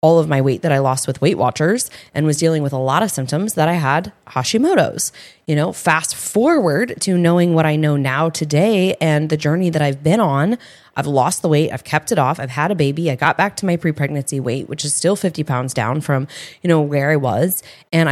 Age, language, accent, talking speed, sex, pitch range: 20-39, English, American, 240 wpm, female, 145-180 Hz